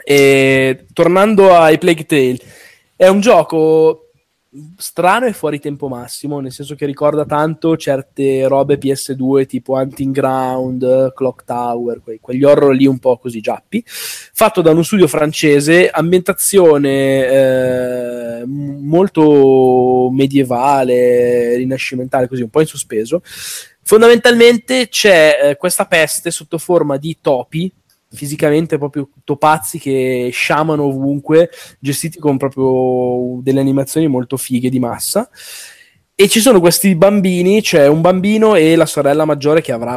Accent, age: native, 20-39